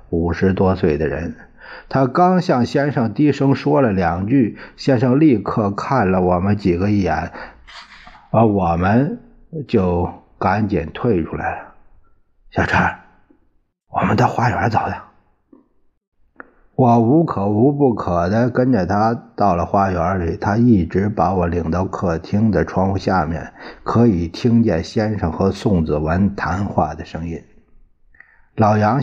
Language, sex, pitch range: Chinese, male, 90-115 Hz